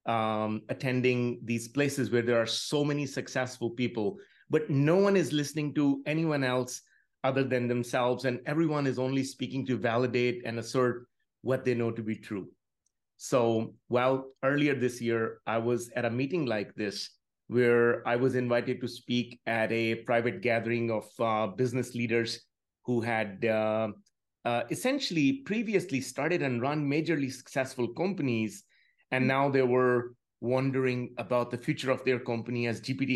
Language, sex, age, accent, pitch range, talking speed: English, male, 30-49, Indian, 120-140 Hz, 160 wpm